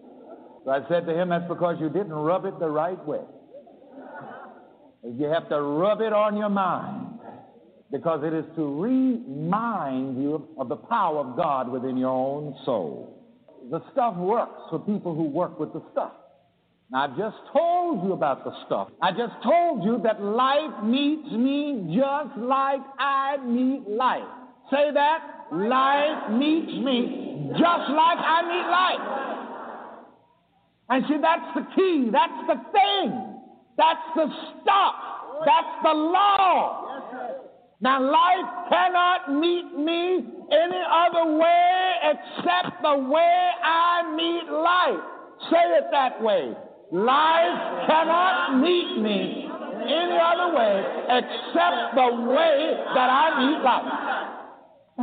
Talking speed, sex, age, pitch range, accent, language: 135 wpm, male, 60-79, 220-330 Hz, American, English